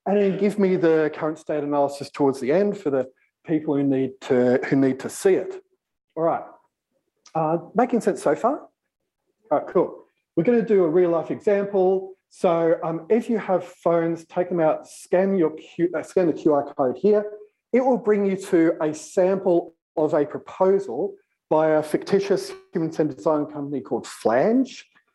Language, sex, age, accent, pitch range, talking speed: English, male, 40-59, Australian, 155-210 Hz, 180 wpm